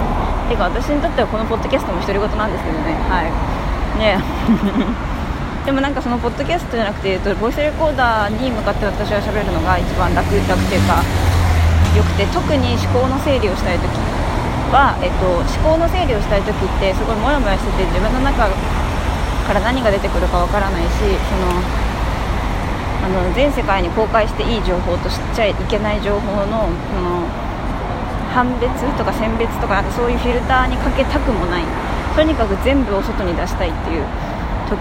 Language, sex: Japanese, female